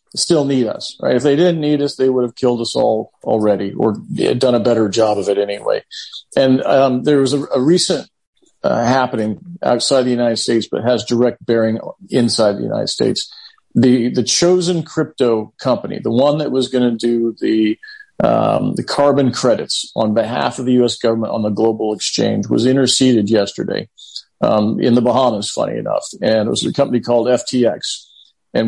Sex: male